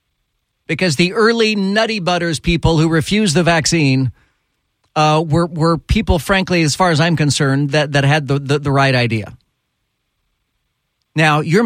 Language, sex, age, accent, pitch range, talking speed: English, male, 40-59, American, 120-150 Hz, 155 wpm